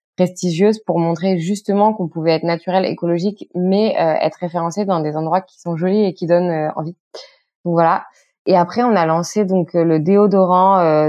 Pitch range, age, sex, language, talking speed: 155-195 Hz, 20-39, female, French, 190 wpm